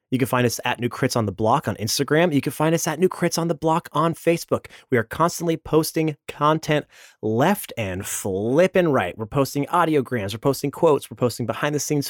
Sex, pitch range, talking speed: male, 125-165 Hz, 225 wpm